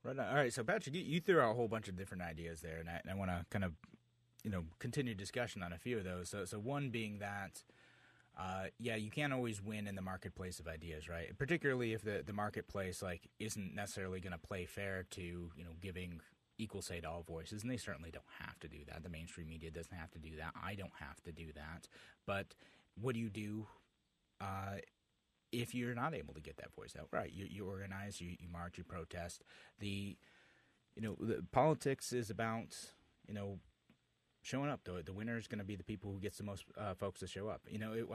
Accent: American